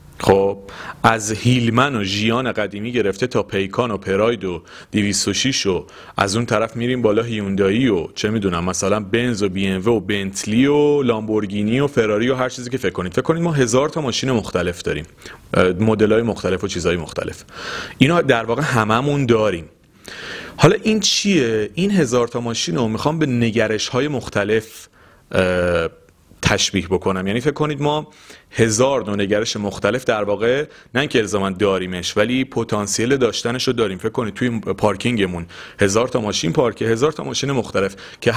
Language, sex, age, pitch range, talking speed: Persian, male, 30-49, 100-125 Hz, 165 wpm